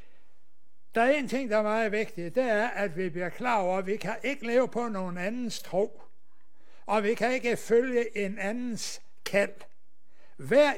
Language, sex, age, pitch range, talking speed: Danish, male, 60-79, 190-235 Hz, 185 wpm